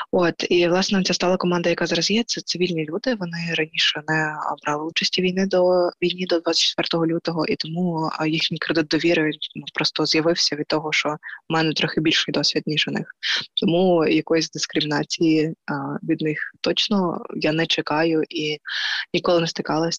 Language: Ukrainian